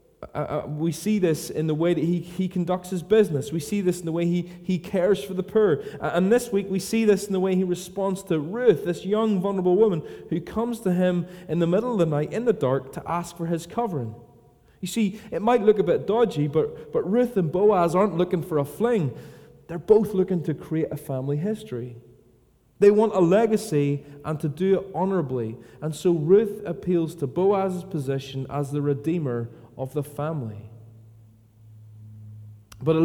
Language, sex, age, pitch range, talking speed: English, male, 30-49, 145-195 Hz, 200 wpm